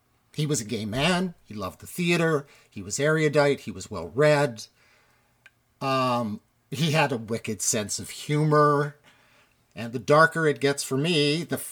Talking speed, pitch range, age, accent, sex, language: 155 wpm, 115-145 Hz, 50-69, American, male, English